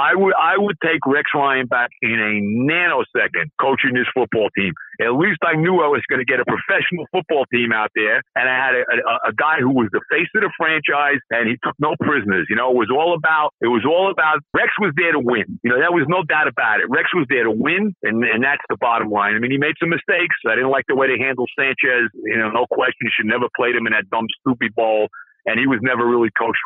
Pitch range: 120-200 Hz